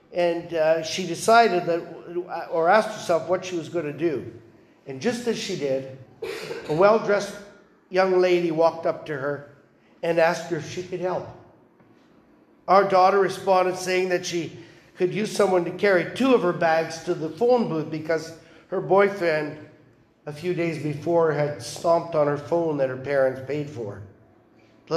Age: 50-69